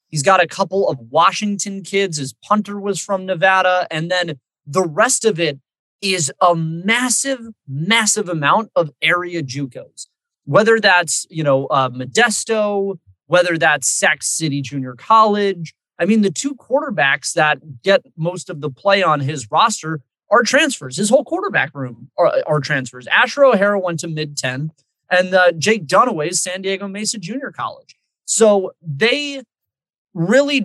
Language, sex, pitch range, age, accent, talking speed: English, male, 145-205 Hz, 30-49, American, 155 wpm